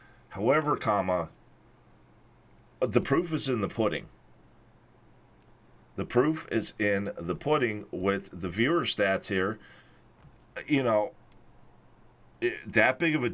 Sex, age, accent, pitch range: male, 40-59, American, 100-120 Hz